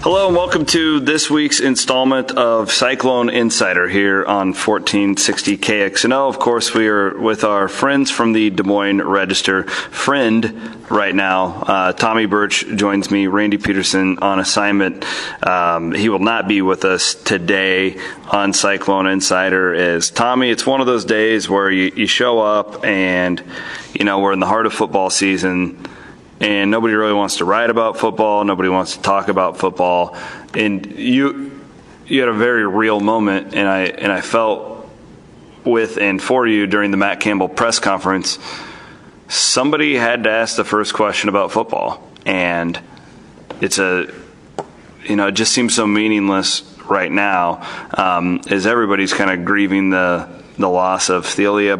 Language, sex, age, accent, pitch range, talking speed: English, male, 30-49, American, 95-110 Hz, 160 wpm